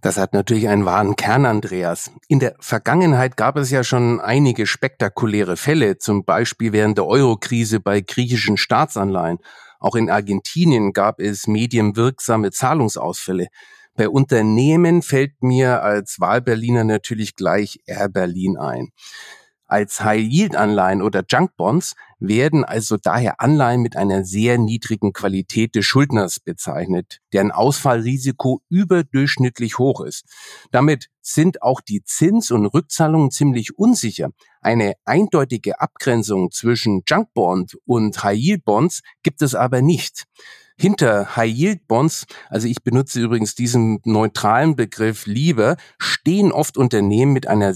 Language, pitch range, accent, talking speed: German, 105-140 Hz, German, 125 wpm